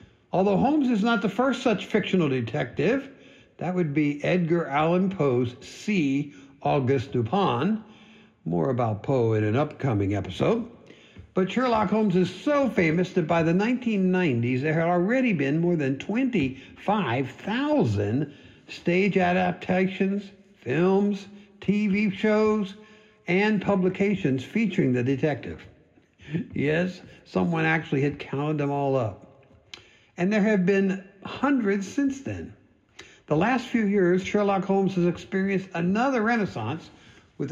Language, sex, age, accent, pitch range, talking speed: English, male, 60-79, American, 140-205 Hz, 125 wpm